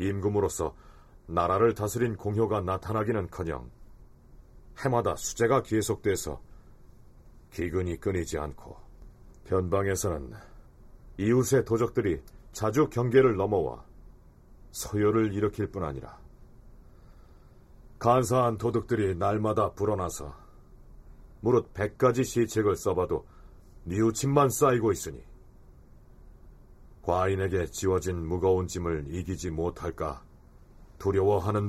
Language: Korean